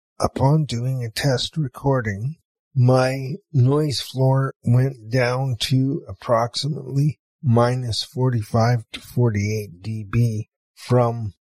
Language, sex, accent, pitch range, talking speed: English, male, American, 115-135 Hz, 95 wpm